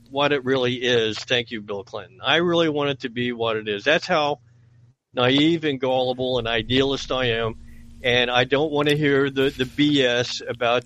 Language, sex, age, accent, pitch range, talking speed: English, male, 50-69, American, 115-140 Hz, 200 wpm